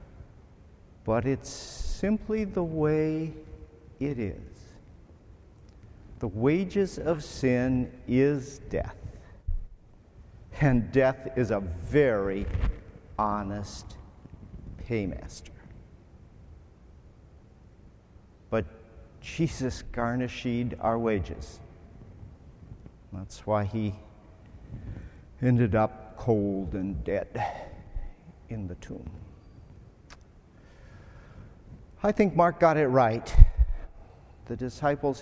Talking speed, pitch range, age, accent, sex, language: 75 wpm, 90-125 Hz, 50-69, American, male, English